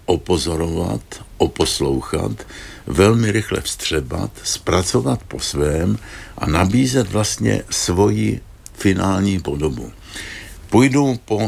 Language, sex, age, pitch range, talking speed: Czech, male, 60-79, 85-105 Hz, 85 wpm